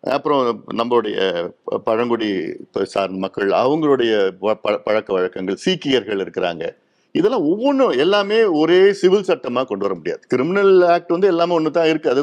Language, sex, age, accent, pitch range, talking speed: Tamil, male, 50-69, native, 145-245 Hz, 130 wpm